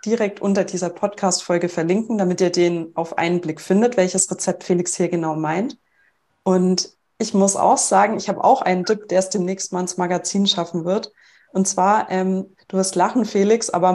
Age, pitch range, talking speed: 30-49, 185-215 Hz, 190 wpm